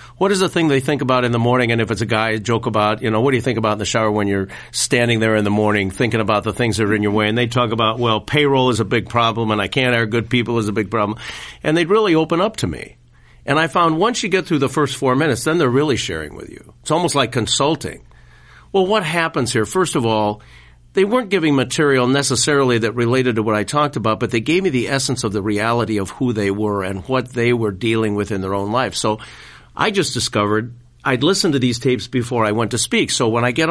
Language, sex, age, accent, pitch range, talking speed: English, male, 50-69, American, 110-140 Hz, 270 wpm